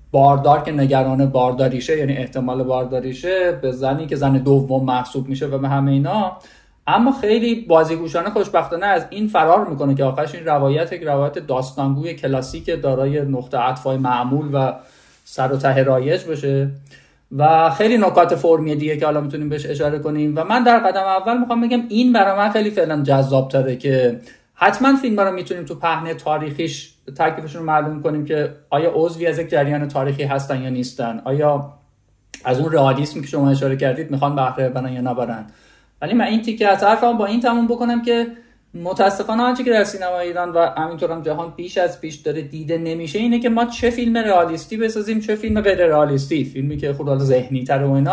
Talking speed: 180 wpm